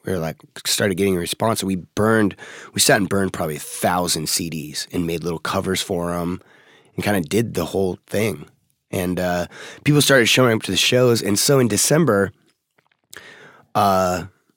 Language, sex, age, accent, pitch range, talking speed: English, male, 20-39, American, 90-110 Hz, 180 wpm